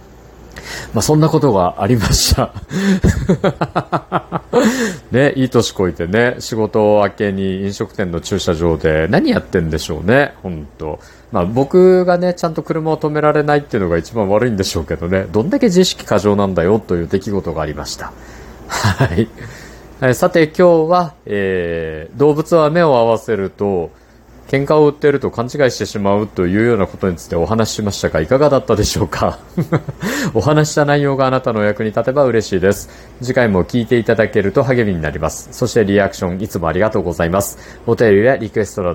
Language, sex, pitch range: Japanese, male, 95-145 Hz